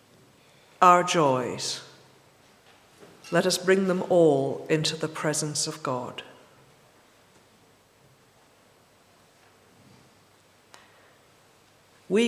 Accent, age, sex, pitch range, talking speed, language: British, 50-69, female, 145-195 Hz, 65 wpm, English